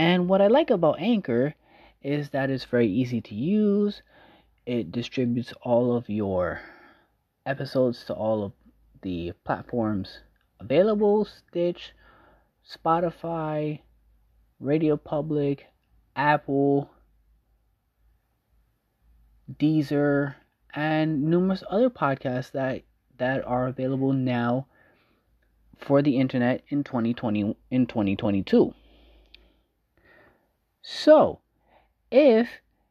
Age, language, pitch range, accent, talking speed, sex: 30-49, English, 130-200 Hz, American, 90 wpm, male